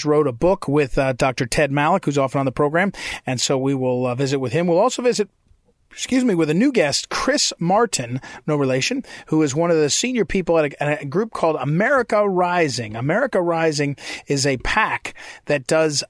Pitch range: 140-175 Hz